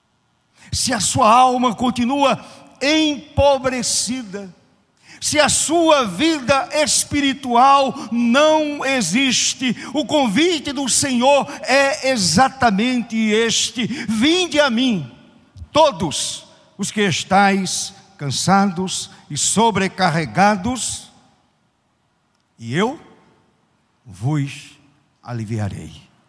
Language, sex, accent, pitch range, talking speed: Portuguese, male, Brazilian, 185-270 Hz, 80 wpm